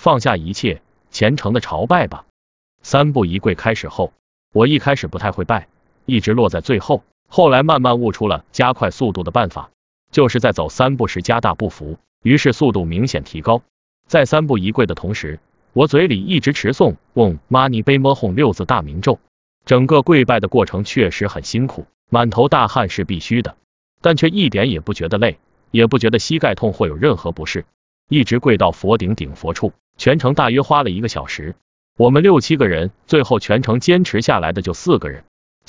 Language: Chinese